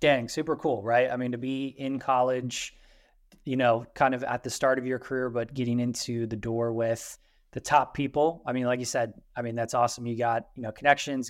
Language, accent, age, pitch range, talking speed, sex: English, American, 20-39, 120-135 Hz, 230 wpm, male